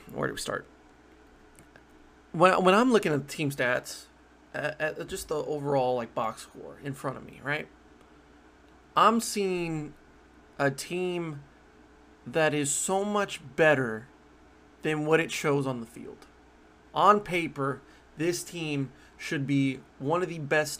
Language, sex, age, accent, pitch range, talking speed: English, male, 30-49, American, 130-180 Hz, 150 wpm